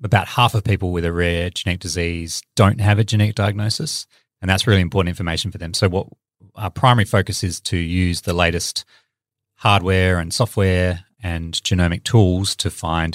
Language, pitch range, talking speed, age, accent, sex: English, 90-110 Hz, 180 wpm, 30-49, Australian, male